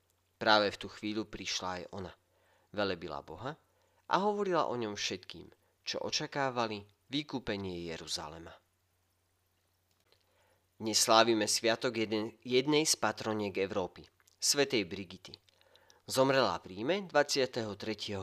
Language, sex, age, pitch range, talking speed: Slovak, male, 40-59, 95-120 Hz, 100 wpm